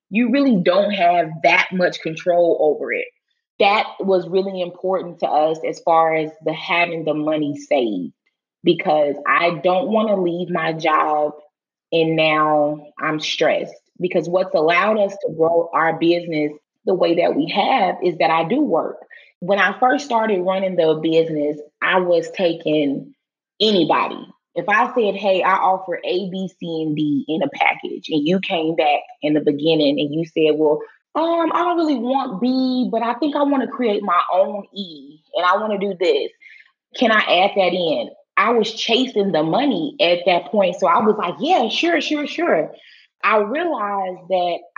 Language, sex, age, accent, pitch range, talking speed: English, female, 20-39, American, 160-220 Hz, 180 wpm